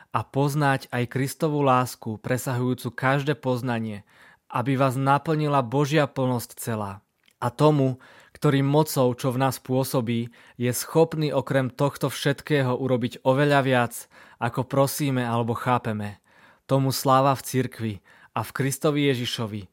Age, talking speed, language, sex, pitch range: 20-39, 130 wpm, Czech, male, 120-135 Hz